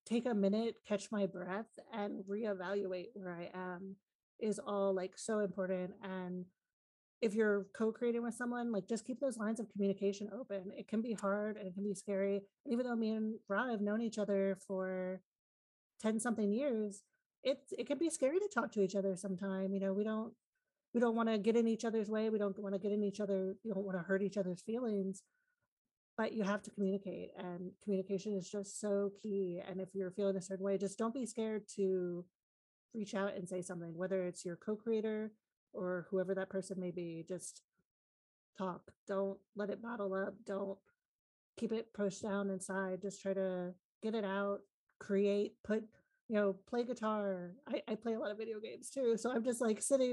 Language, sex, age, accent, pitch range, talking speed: English, female, 30-49, American, 190-225 Hz, 205 wpm